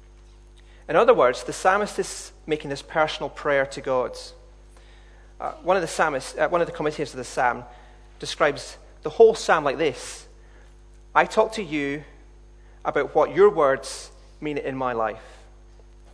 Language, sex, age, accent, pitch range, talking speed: English, male, 30-49, British, 130-180 Hz, 160 wpm